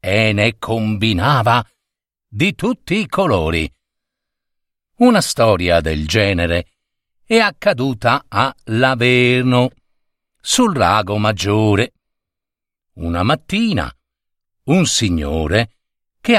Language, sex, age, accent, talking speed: Italian, male, 50-69, native, 85 wpm